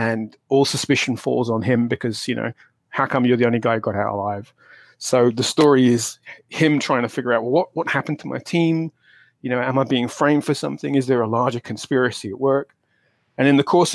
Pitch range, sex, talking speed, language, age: 115-135 Hz, male, 230 wpm, English, 30-49